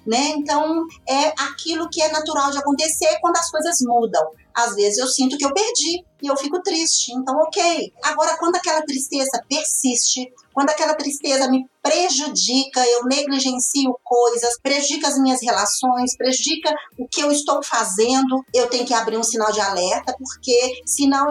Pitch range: 235-285 Hz